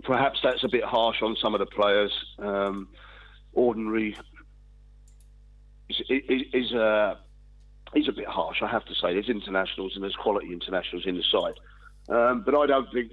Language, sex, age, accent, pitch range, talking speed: English, male, 40-59, British, 100-115 Hz, 165 wpm